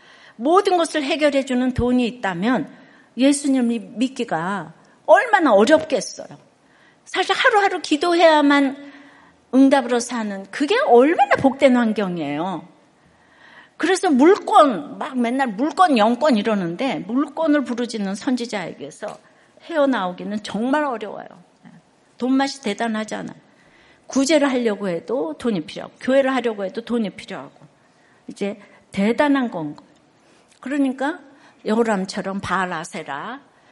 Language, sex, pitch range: Korean, female, 205-275 Hz